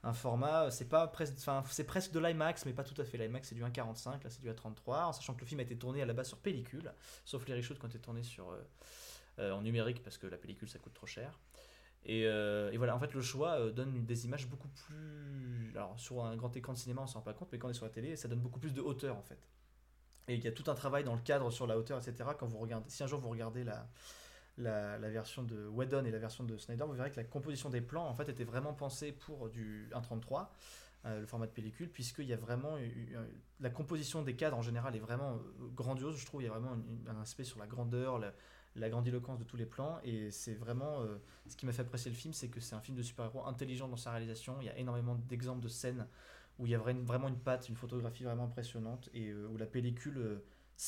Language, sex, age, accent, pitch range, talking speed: French, male, 20-39, French, 115-135 Hz, 260 wpm